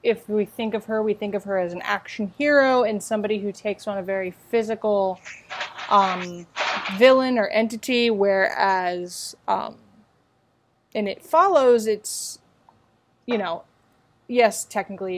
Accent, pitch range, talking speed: American, 185-220 Hz, 140 wpm